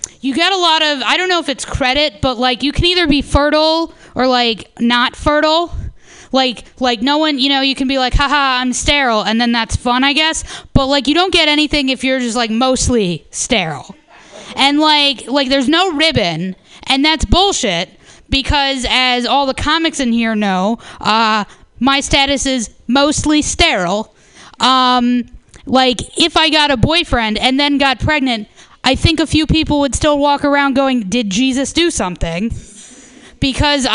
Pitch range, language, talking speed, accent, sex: 230-285 Hz, English, 180 wpm, American, female